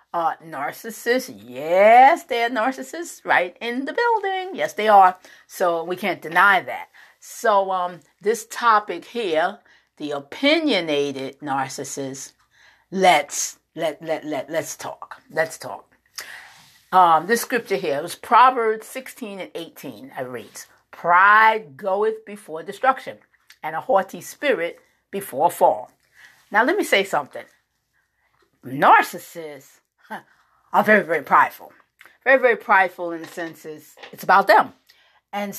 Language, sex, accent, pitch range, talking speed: English, female, American, 175-245 Hz, 125 wpm